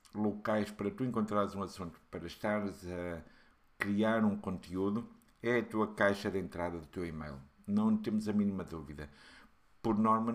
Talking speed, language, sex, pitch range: 160 wpm, Portuguese, male, 95-110 Hz